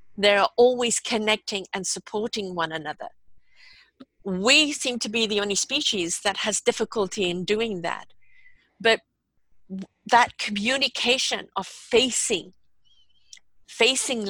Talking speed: 110 wpm